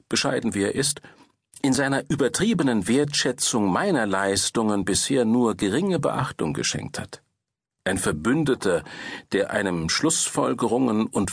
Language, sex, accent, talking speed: German, male, German, 115 wpm